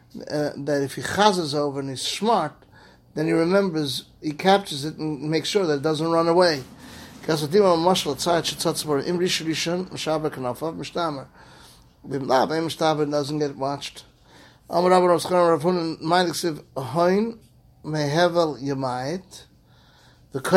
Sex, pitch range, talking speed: male, 145-175 Hz, 75 wpm